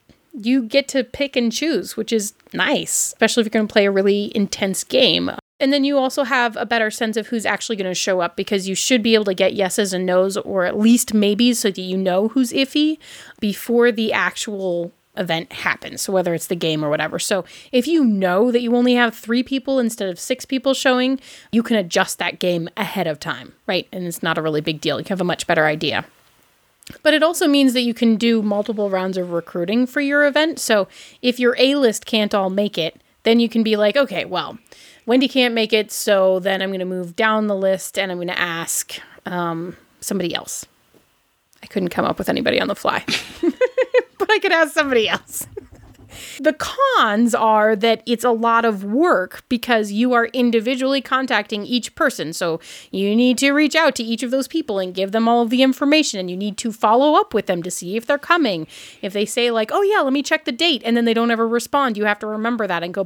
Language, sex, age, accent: English, female, 30-49, American